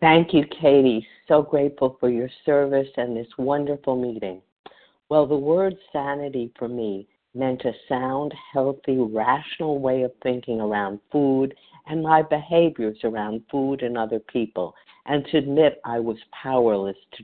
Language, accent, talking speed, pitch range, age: English, American, 150 wpm, 120-155 Hz, 50-69